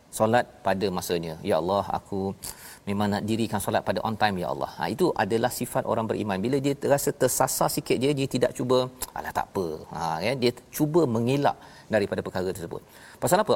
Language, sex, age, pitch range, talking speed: Malayalam, male, 40-59, 105-135 Hz, 190 wpm